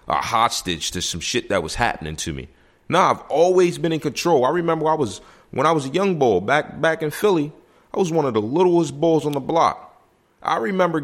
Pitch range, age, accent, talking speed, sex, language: 105-160 Hz, 30-49, American, 235 wpm, male, English